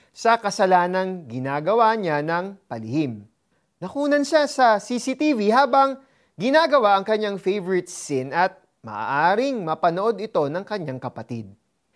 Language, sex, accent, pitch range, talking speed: Filipino, male, native, 170-235 Hz, 115 wpm